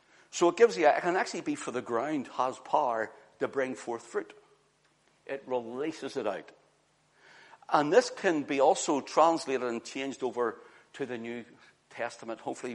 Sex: male